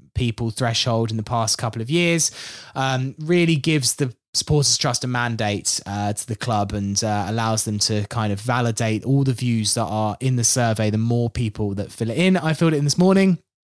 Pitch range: 110-140 Hz